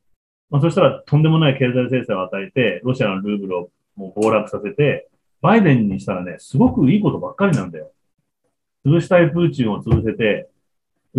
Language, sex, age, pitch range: Japanese, male, 30-49, 125-175 Hz